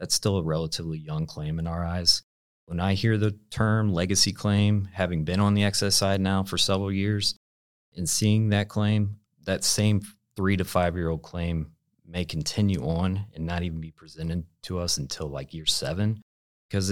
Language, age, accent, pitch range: English, 30-49, American, 80-100 Hz